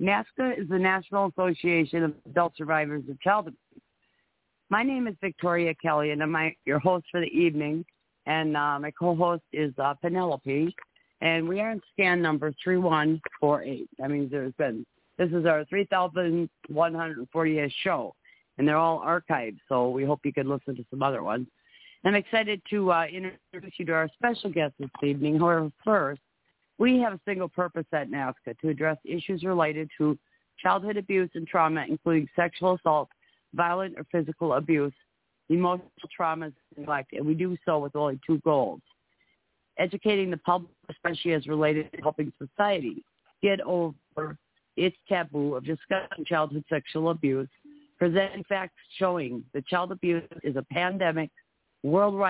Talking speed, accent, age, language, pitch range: 160 wpm, American, 50-69, English, 150-185 Hz